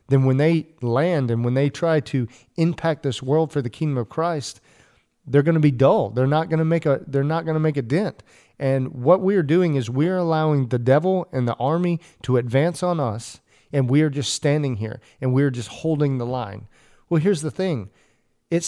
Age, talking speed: 40-59, 220 wpm